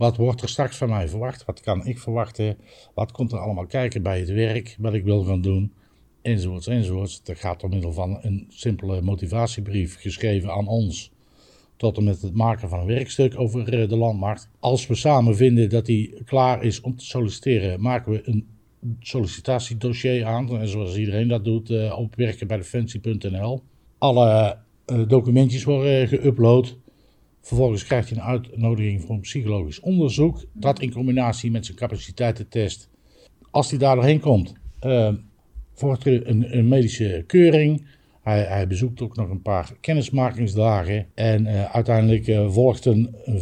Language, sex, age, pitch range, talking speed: Dutch, male, 50-69, 105-125 Hz, 160 wpm